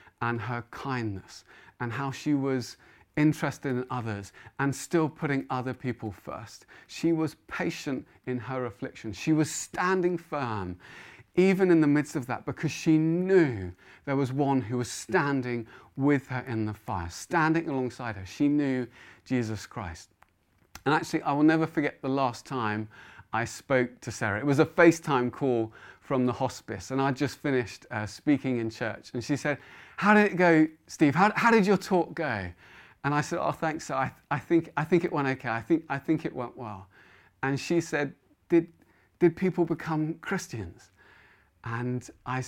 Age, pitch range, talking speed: 30-49, 110-150 Hz, 180 wpm